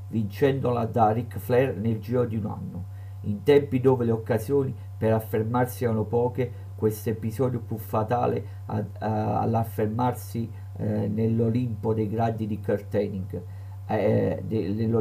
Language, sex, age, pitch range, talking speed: Italian, male, 50-69, 100-115 Hz, 130 wpm